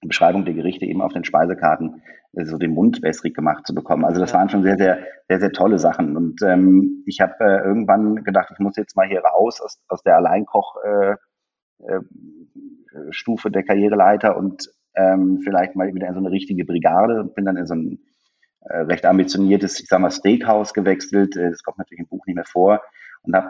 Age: 30-49